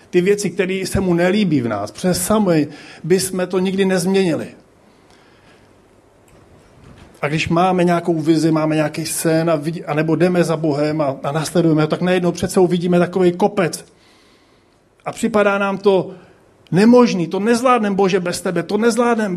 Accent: native